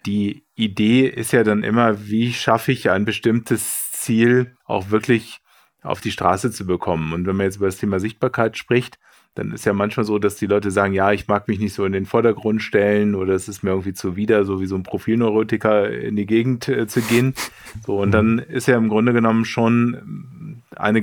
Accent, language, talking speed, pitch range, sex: German, German, 210 wpm, 100-120 Hz, male